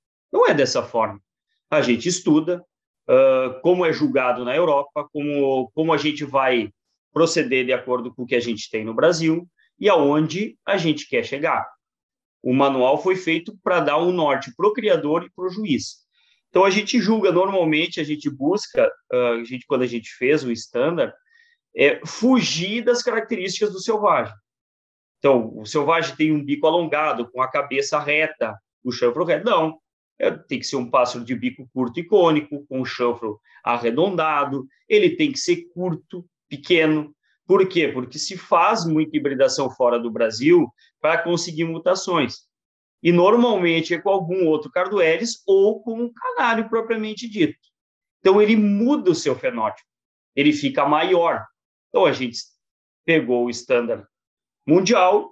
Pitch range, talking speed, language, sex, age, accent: 140-220 Hz, 165 wpm, Portuguese, male, 30-49, Brazilian